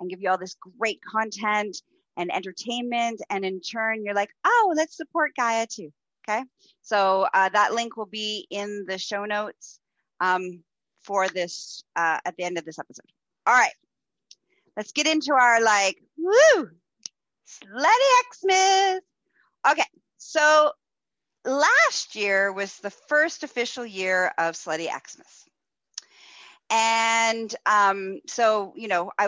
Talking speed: 140 wpm